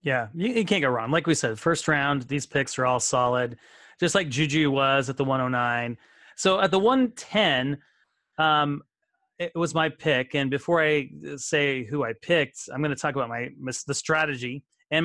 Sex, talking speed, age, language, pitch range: male, 210 wpm, 30-49, English, 135-170 Hz